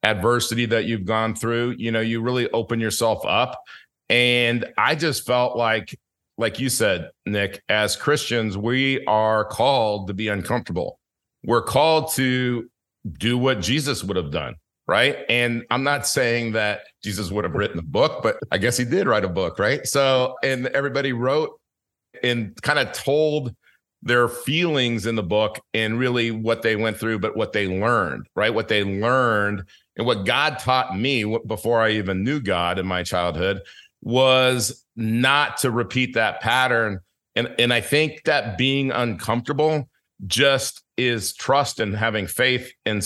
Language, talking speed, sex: English, 165 wpm, male